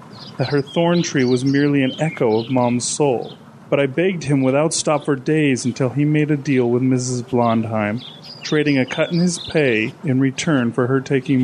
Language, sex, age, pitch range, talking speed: English, male, 30-49, 125-155 Hz, 200 wpm